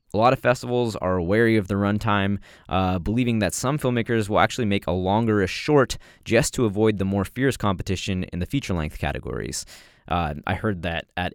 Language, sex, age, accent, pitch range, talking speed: English, male, 20-39, American, 90-115 Hz, 200 wpm